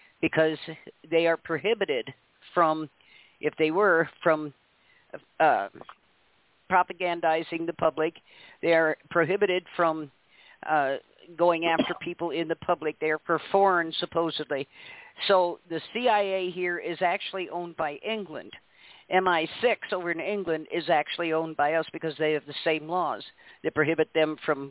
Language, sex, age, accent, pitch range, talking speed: English, male, 50-69, American, 160-185 Hz, 140 wpm